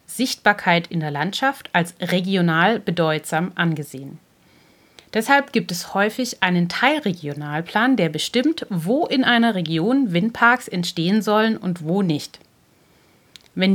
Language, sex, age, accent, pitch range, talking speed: German, female, 30-49, German, 165-230 Hz, 120 wpm